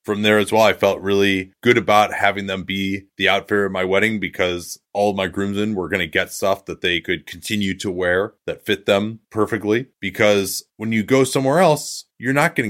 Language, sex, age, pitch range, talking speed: English, male, 30-49, 95-115 Hz, 215 wpm